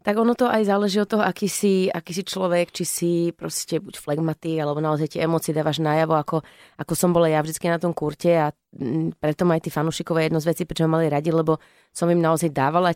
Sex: female